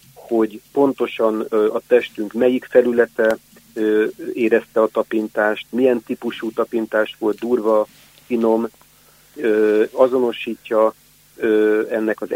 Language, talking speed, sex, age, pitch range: Hungarian, 85 wpm, male, 50-69, 110-130 Hz